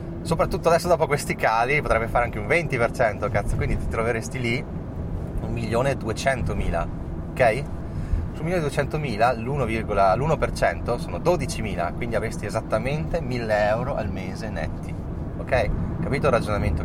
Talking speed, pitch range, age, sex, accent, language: 120 wpm, 85-110 Hz, 30-49, male, native, Italian